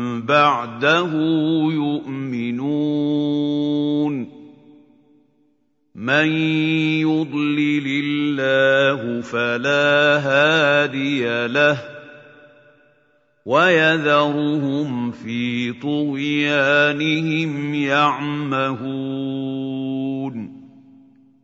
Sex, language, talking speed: male, Arabic, 35 wpm